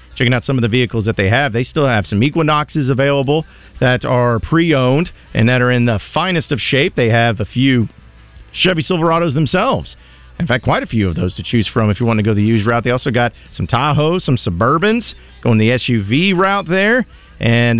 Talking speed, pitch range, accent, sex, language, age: 215 wpm, 110-150 Hz, American, male, English, 40-59